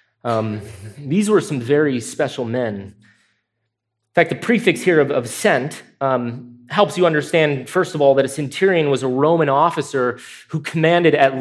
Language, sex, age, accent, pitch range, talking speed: English, male, 30-49, American, 120-155 Hz, 165 wpm